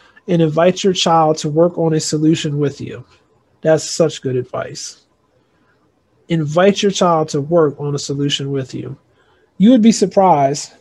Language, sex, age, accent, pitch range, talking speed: English, male, 30-49, American, 150-185 Hz, 160 wpm